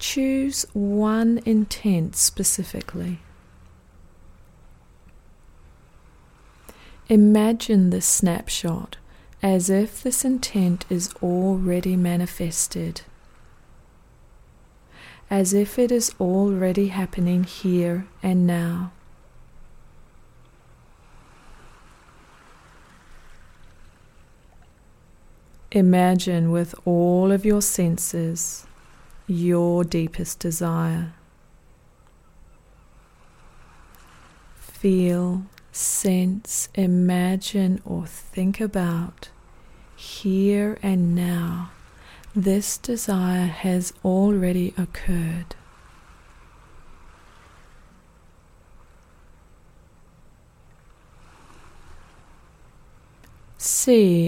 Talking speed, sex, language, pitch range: 50 wpm, female, English, 155-195 Hz